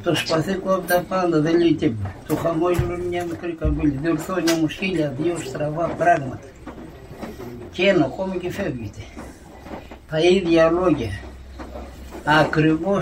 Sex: male